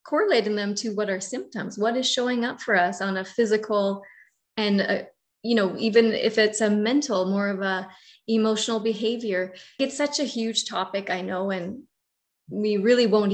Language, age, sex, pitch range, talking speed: English, 30-49, female, 195-230 Hz, 175 wpm